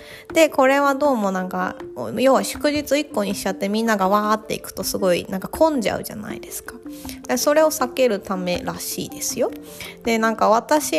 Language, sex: Japanese, female